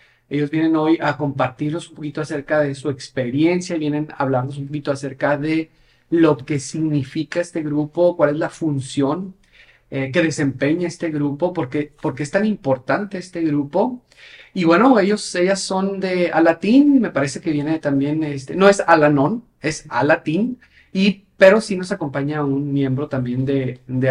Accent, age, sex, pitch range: Mexican, 40-59, male, 135-170 Hz